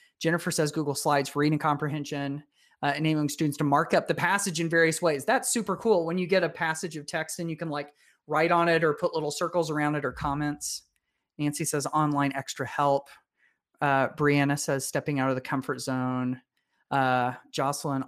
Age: 30-49